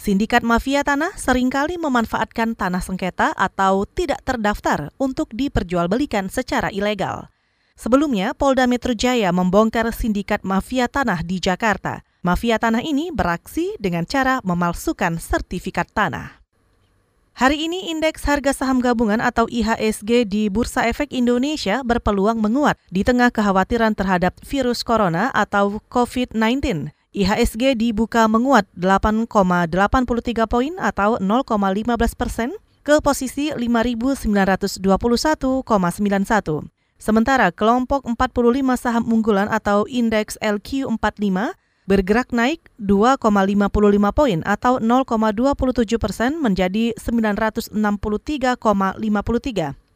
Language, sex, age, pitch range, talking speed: Indonesian, female, 30-49, 205-255 Hz, 100 wpm